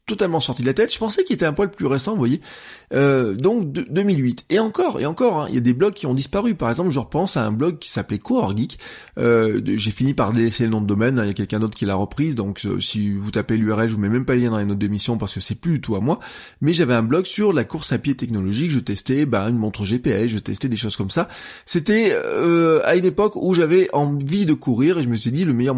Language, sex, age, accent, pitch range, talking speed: French, male, 20-39, French, 115-160 Hz, 290 wpm